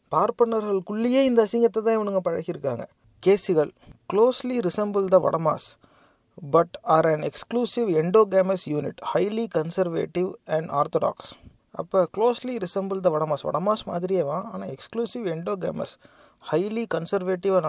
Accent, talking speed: Indian, 110 wpm